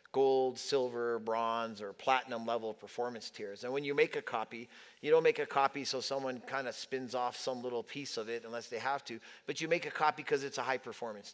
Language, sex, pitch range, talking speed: English, male, 125-185 Hz, 235 wpm